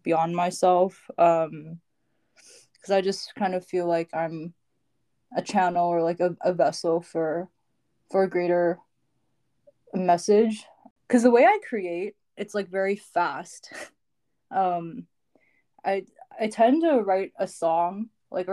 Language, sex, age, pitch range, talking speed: English, female, 20-39, 170-205 Hz, 135 wpm